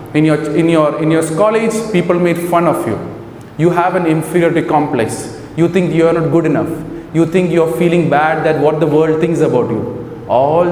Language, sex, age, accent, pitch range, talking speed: English, male, 30-49, Indian, 135-170 Hz, 205 wpm